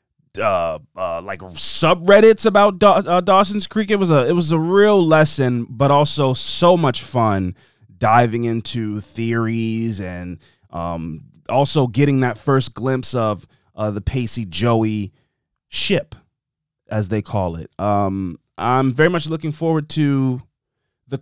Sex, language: male, English